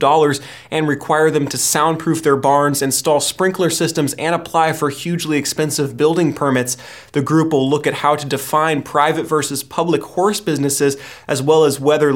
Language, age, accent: English, 20-39, American